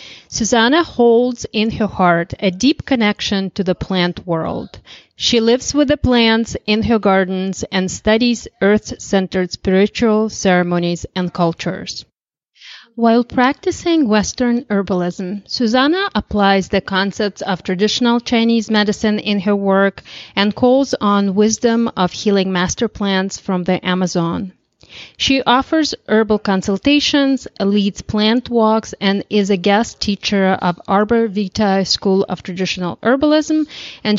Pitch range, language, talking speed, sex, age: 190-225 Hz, English, 130 wpm, female, 30-49